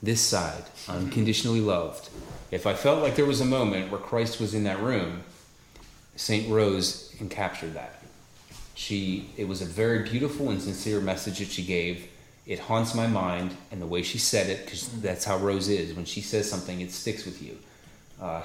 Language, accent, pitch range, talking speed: English, American, 90-110 Hz, 190 wpm